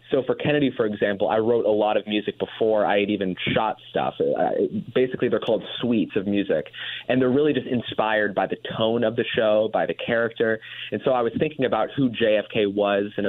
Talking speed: 210 wpm